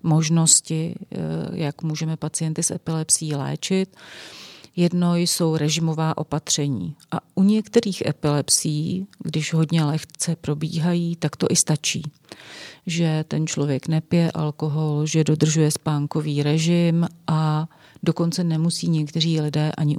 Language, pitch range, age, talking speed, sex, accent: Czech, 150-170 Hz, 40-59, 115 wpm, female, native